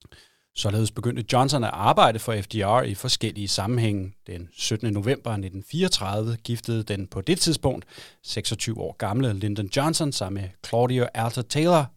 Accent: native